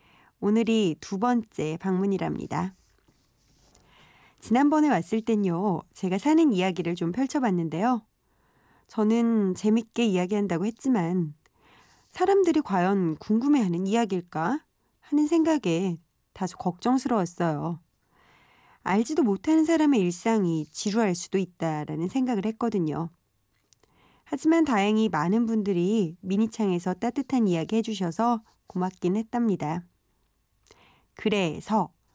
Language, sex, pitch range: Korean, female, 175-250 Hz